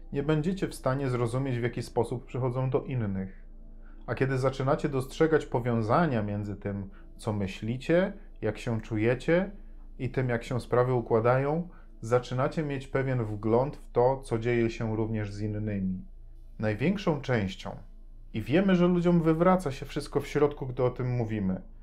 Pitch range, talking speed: 110-135 Hz, 155 wpm